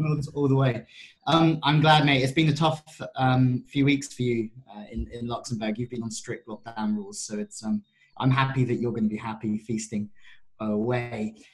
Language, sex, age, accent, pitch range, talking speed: English, male, 20-39, British, 115-145 Hz, 205 wpm